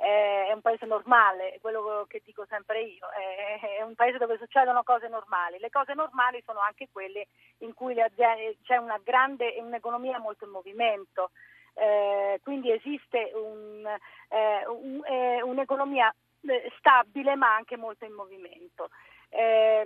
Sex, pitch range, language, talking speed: female, 210-270 Hz, Italian, 125 wpm